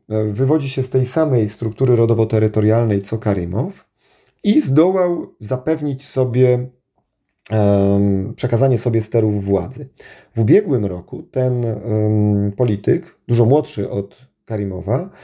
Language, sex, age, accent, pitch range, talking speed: Polish, male, 40-59, native, 110-145 Hz, 100 wpm